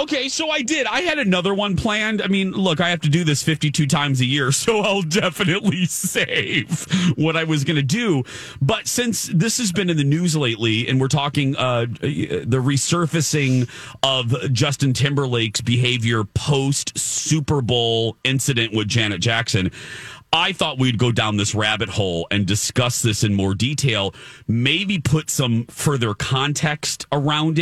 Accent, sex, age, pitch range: American, male, 40-59, 115-165 Hz